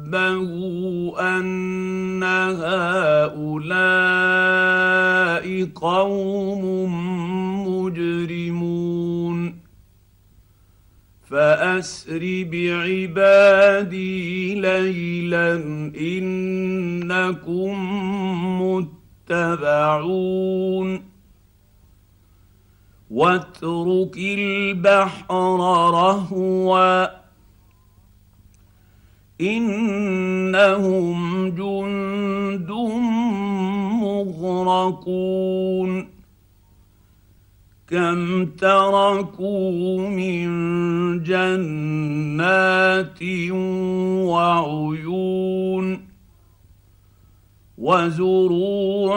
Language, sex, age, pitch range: Arabic, male, 50-69, 165-185 Hz